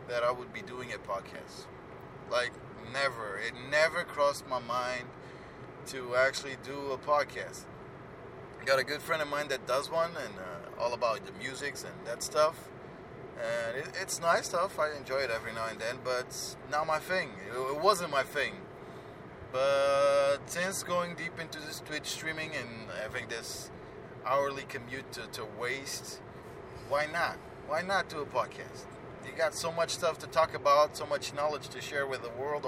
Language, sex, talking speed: English, male, 175 wpm